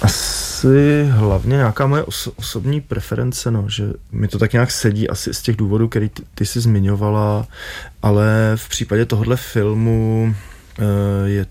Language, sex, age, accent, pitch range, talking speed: Czech, male, 20-39, native, 100-110 Hz, 145 wpm